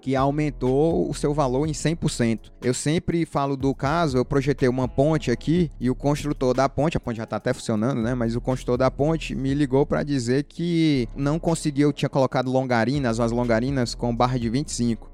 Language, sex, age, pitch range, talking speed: Portuguese, male, 20-39, 130-165 Hz, 200 wpm